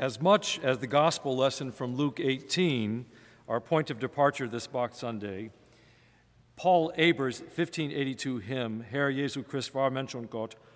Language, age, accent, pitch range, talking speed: English, 50-69, American, 115-145 Hz, 135 wpm